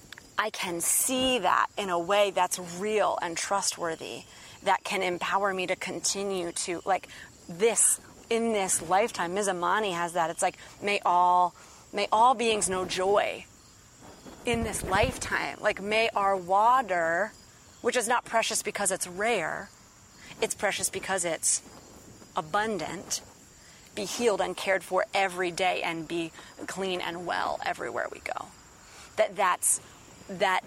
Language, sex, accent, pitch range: English, female, American, 175-205 Hz